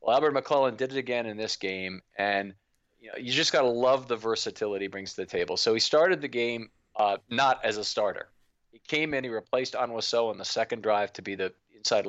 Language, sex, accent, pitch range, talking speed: English, male, American, 105-130 Hz, 235 wpm